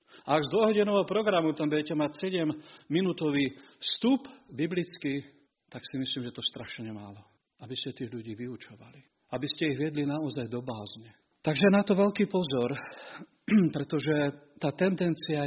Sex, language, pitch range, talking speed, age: male, Slovak, 140-210 Hz, 145 wpm, 40-59